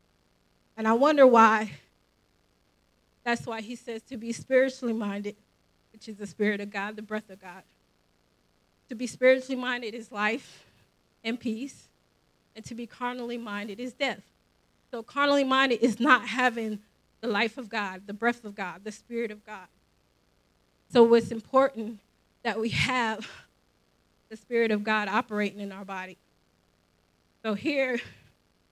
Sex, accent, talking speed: female, American, 150 wpm